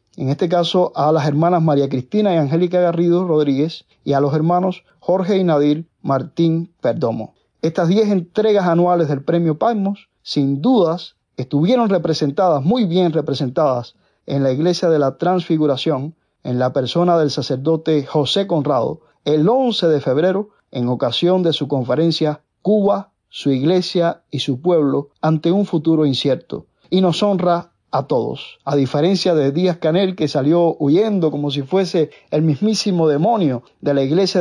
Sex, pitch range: male, 145-185 Hz